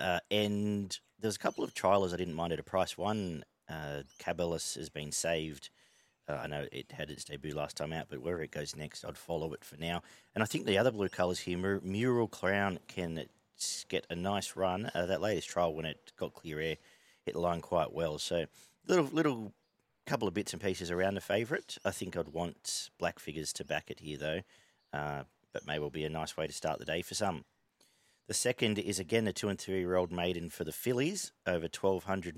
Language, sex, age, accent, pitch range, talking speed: English, male, 40-59, Australian, 85-105 Hz, 220 wpm